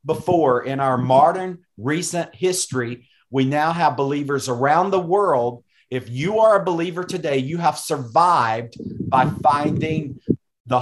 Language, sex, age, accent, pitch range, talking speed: English, male, 40-59, American, 135-165 Hz, 140 wpm